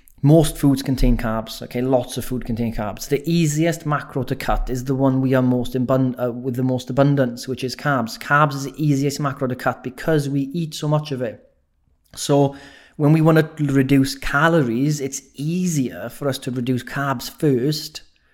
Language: English